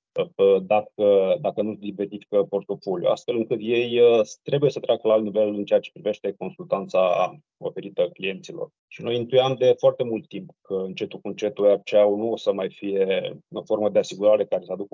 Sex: male